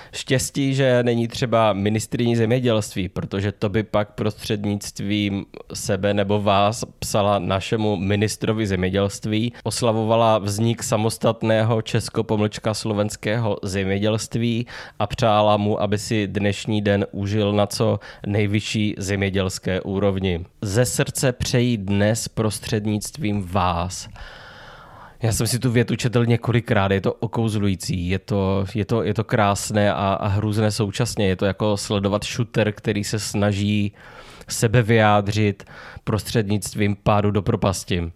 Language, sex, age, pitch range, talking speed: English, male, 20-39, 100-115 Hz, 120 wpm